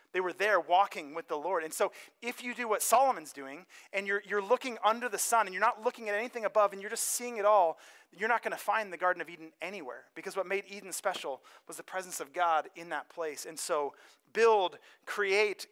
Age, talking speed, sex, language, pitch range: 30-49, 235 wpm, male, English, 160-210 Hz